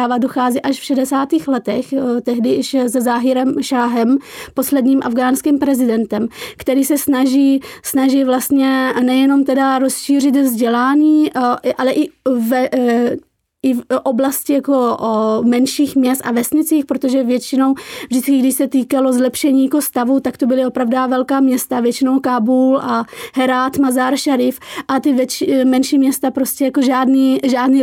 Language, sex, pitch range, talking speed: Czech, female, 250-275 Hz, 135 wpm